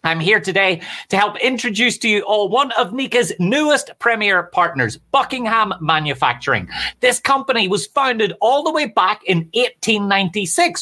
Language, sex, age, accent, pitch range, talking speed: English, male, 30-49, Irish, 180-245 Hz, 150 wpm